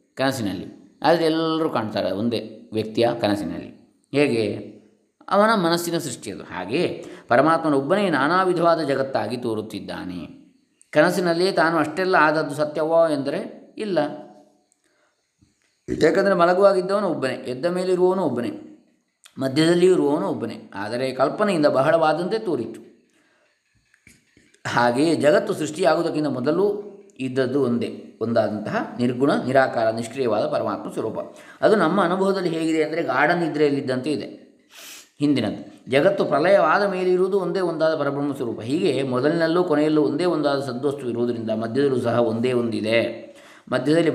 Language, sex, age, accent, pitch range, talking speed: Kannada, male, 20-39, native, 125-175 Hz, 105 wpm